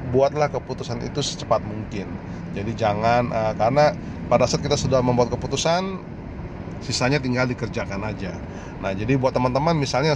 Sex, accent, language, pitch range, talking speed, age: male, native, Indonesian, 120-145 Hz, 140 wpm, 30-49